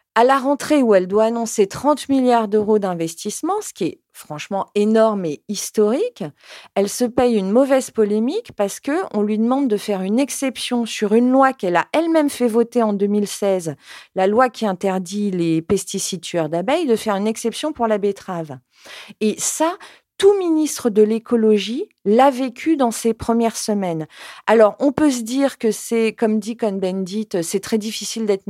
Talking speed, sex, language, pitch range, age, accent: 175 wpm, female, French, 185-235 Hz, 40-59, French